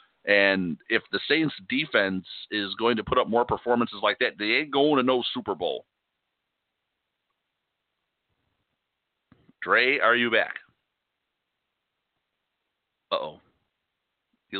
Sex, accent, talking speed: male, American, 110 wpm